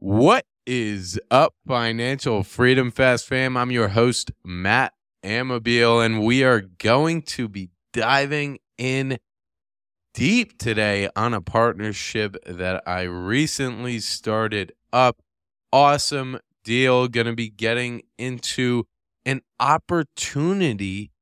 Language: English